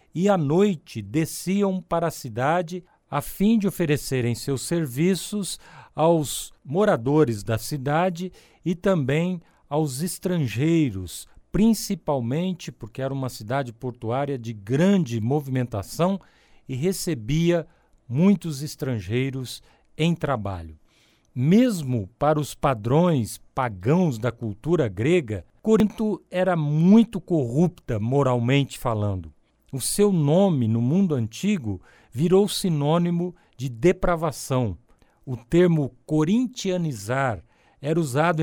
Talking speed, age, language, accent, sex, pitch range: 100 wpm, 50-69, Portuguese, Brazilian, male, 125-175 Hz